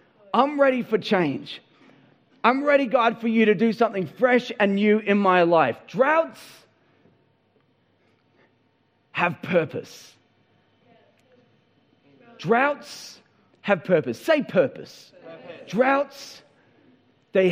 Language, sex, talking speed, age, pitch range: English, male, 95 wpm, 40-59, 190-265 Hz